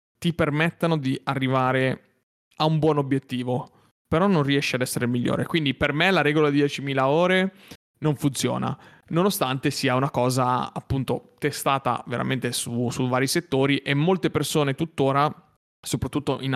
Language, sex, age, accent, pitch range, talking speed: Italian, male, 30-49, native, 130-150 Hz, 150 wpm